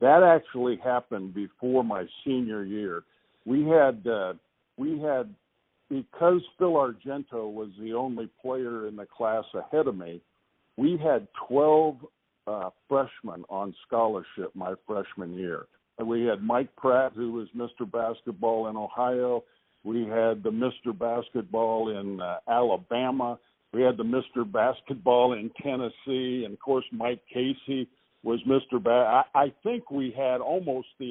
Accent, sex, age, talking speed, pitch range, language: American, male, 60-79, 145 wpm, 110-135 Hz, English